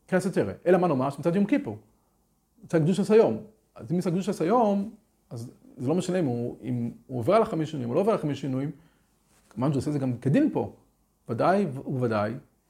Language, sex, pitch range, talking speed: Hebrew, male, 140-200 Hz, 195 wpm